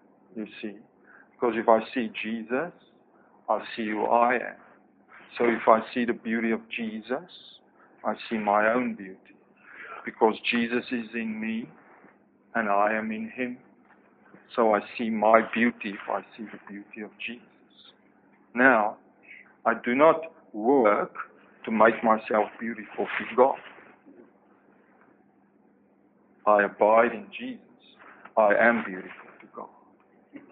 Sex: male